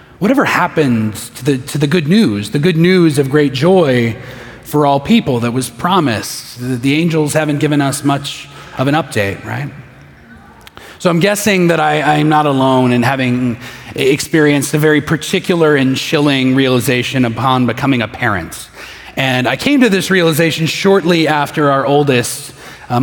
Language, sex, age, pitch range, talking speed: English, male, 30-49, 125-155 Hz, 160 wpm